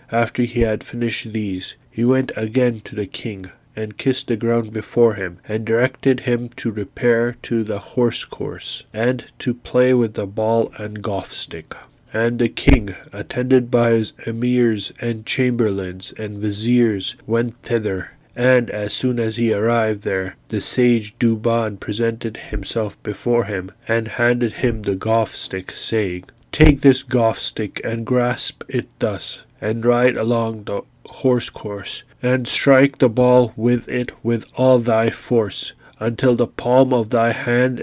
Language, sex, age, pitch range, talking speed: English, male, 30-49, 110-125 Hz, 150 wpm